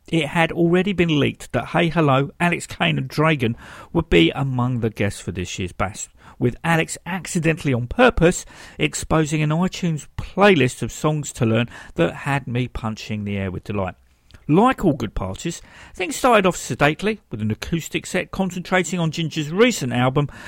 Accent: British